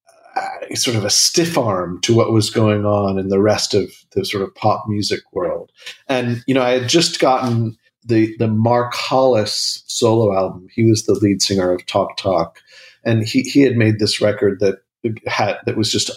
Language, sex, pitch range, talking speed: English, male, 100-125 Hz, 200 wpm